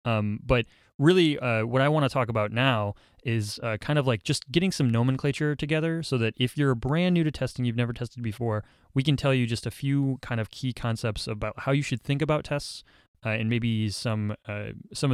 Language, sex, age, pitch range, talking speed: English, male, 20-39, 110-130 Hz, 225 wpm